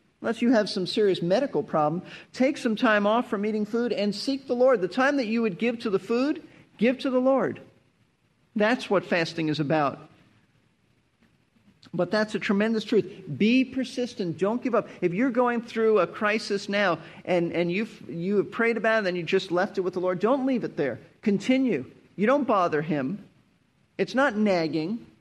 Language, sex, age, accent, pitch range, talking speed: English, male, 40-59, American, 170-230 Hz, 195 wpm